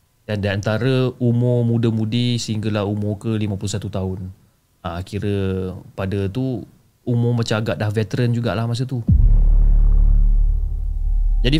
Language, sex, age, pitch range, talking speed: Malay, male, 30-49, 105-130 Hz, 115 wpm